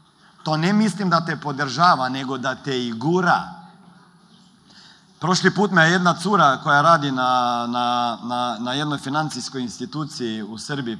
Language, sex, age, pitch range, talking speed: Croatian, male, 40-59, 125-180 Hz, 145 wpm